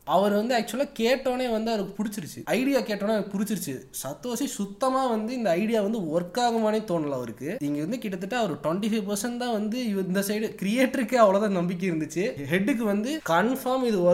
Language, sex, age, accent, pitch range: Tamil, male, 20-39, native, 170-215 Hz